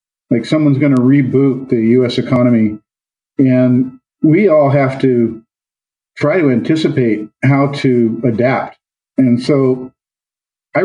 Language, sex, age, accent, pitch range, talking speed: English, male, 50-69, American, 125-150 Hz, 120 wpm